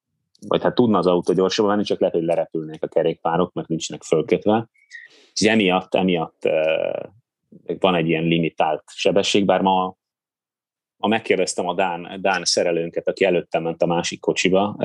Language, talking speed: Hungarian, 155 wpm